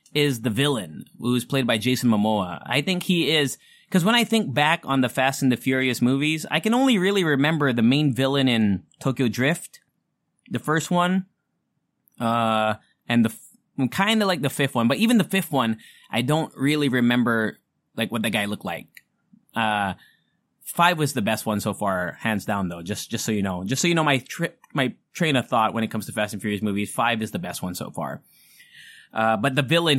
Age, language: 20-39, English